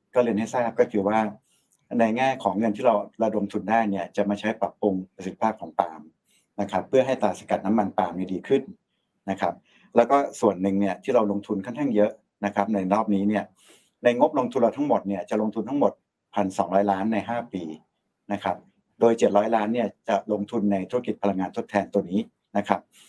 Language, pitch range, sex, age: Thai, 100-115 Hz, male, 60-79